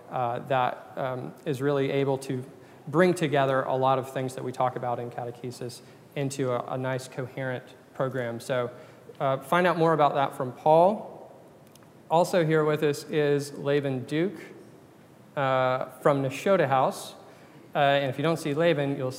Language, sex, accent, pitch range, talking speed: English, male, American, 135-165 Hz, 165 wpm